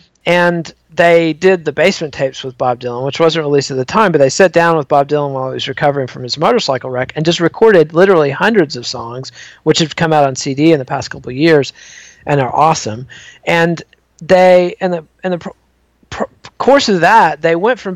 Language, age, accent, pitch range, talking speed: English, 40-59, American, 145-170 Hz, 220 wpm